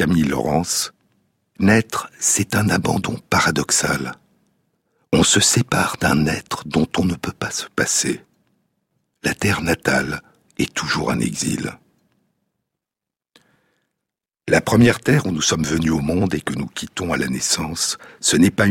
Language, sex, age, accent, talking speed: French, male, 60-79, French, 145 wpm